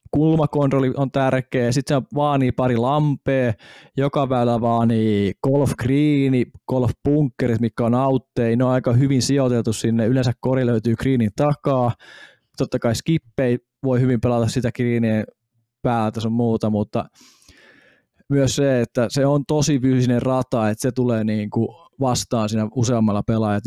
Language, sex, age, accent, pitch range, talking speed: Finnish, male, 20-39, native, 110-135 Hz, 150 wpm